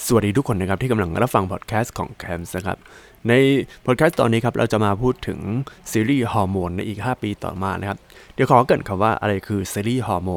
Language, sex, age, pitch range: Thai, male, 20-39, 95-120 Hz